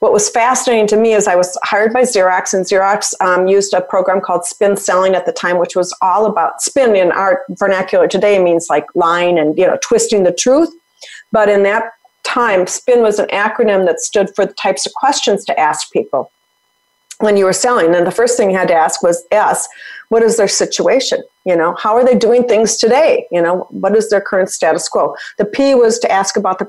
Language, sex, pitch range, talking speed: English, female, 180-230 Hz, 225 wpm